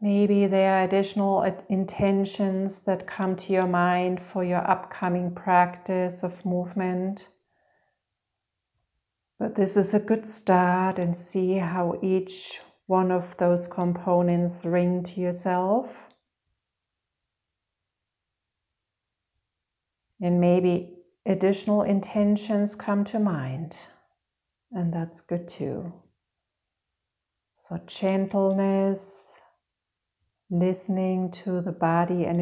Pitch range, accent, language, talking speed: 165-185 Hz, German, English, 95 wpm